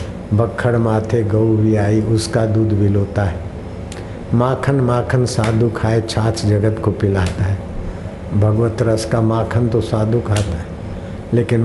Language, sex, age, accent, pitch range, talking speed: Hindi, male, 60-79, native, 95-115 Hz, 140 wpm